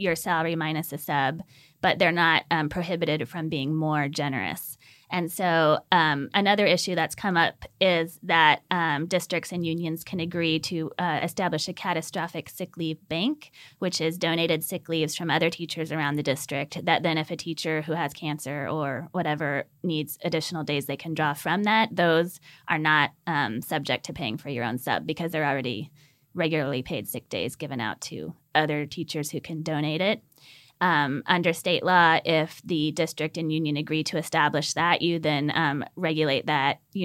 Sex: female